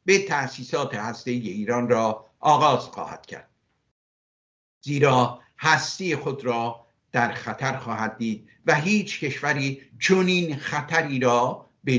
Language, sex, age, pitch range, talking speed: Persian, male, 60-79, 125-160 Hz, 115 wpm